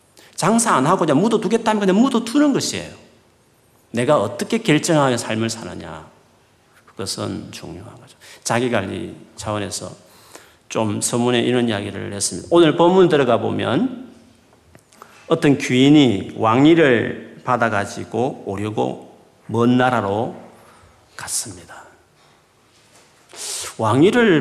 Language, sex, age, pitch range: Korean, male, 40-59, 100-135 Hz